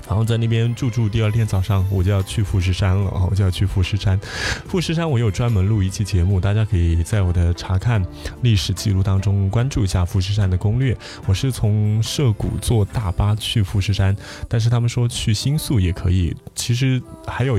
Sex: male